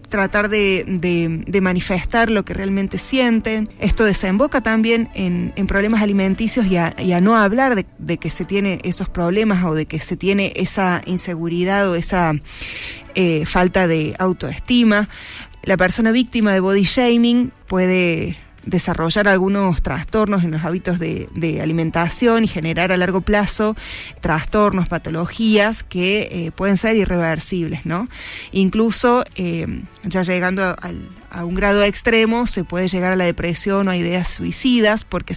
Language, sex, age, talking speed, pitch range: Spanish, female, 20-39, 155 wpm, 175-210 Hz